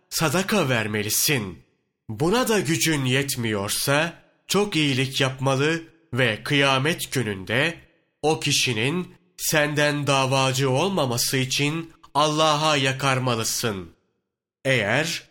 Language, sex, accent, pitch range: Turkish, male, native, 125-155 Hz